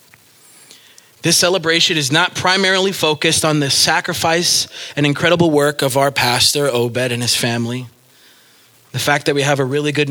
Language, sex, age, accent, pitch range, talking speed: English, male, 20-39, American, 120-145 Hz, 160 wpm